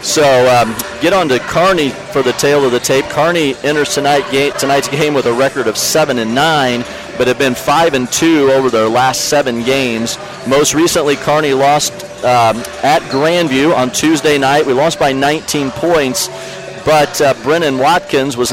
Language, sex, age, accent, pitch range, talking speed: English, male, 40-59, American, 120-145 Hz, 180 wpm